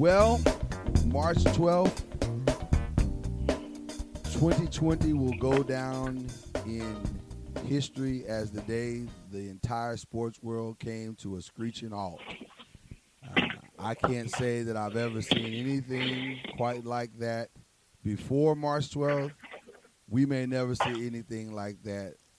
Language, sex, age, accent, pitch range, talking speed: English, male, 30-49, American, 110-140 Hz, 115 wpm